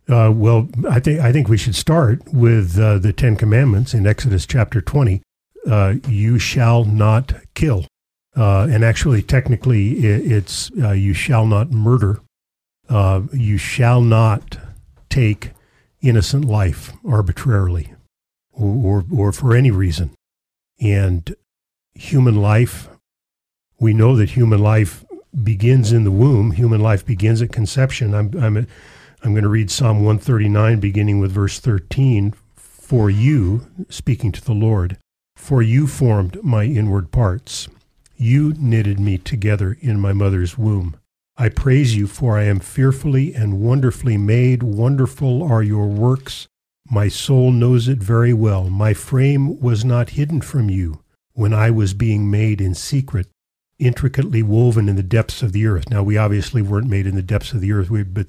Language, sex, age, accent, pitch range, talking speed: English, male, 50-69, American, 100-125 Hz, 155 wpm